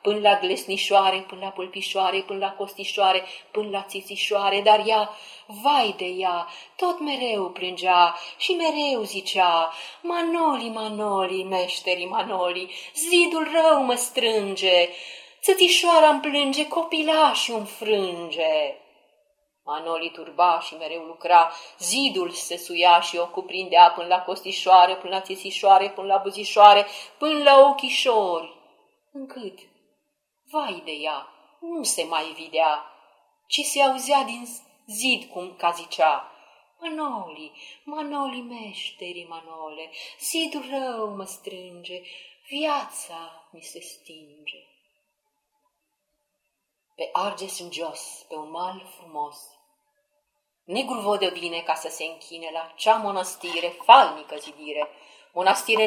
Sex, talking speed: female, 115 wpm